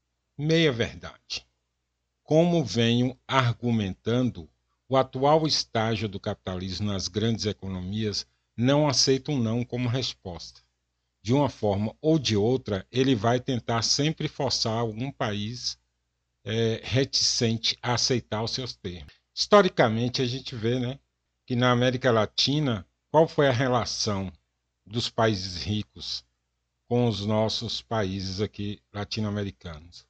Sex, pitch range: male, 95-130 Hz